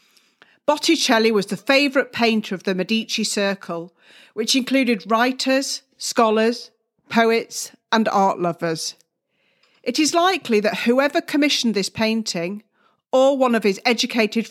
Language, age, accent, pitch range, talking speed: English, 40-59, British, 185-245 Hz, 125 wpm